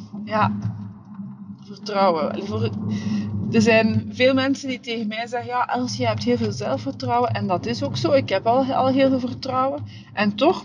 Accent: Dutch